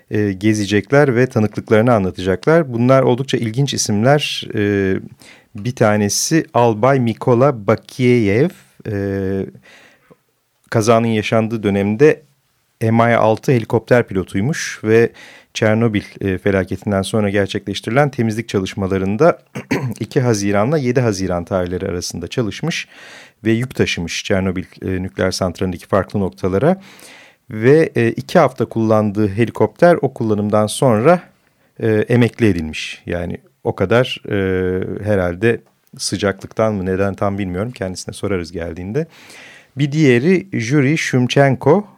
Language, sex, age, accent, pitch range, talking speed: Turkish, male, 40-59, native, 95-125 Hz, 100 wpm